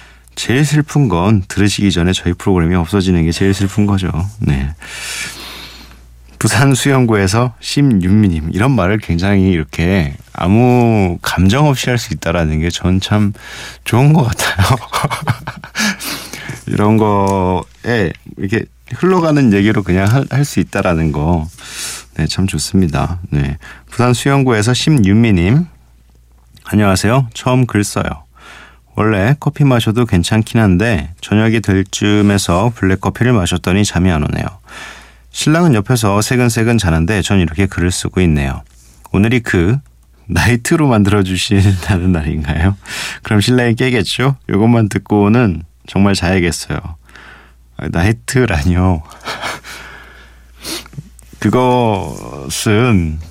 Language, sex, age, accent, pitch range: Korean, male, 40-59, native, 80-115 Hz